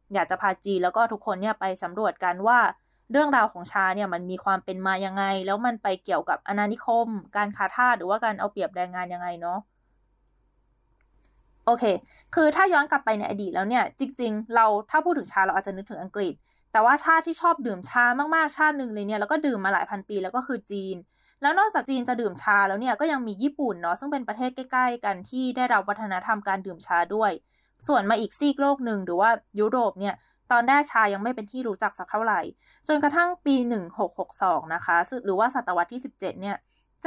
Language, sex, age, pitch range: Thai, female, 20-39, 195-260 Hz